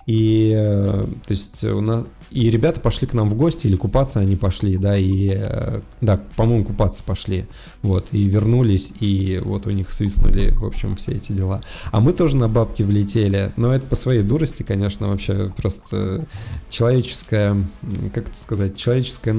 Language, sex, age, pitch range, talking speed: Russian, male, 20-39, 100-115 Hz, 165 wpm